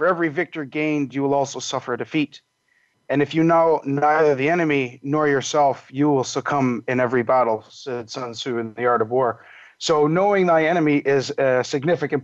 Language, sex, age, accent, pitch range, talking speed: English, male, 30-49, American, 125-145 Hz, 195 wpm